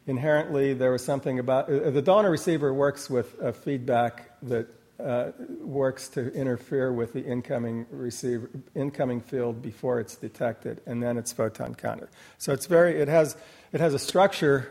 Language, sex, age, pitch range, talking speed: English, male, 50-69, 125-145 Hz, 165 wpm